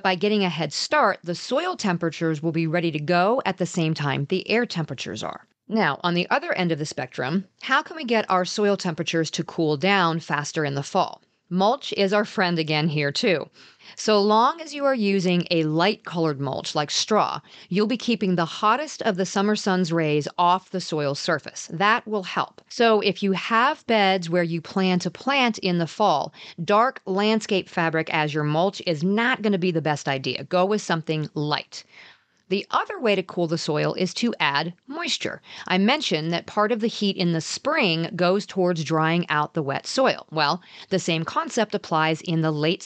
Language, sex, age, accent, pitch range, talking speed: English, female, 40-59, American, 165-210 Hz, 205 wpm